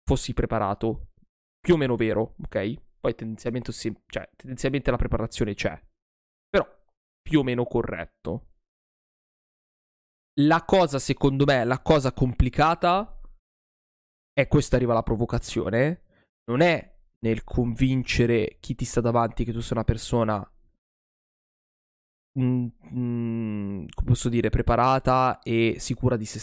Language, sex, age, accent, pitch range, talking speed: Italian, male, 20-39, native, 110-135 Hz, 125 wpm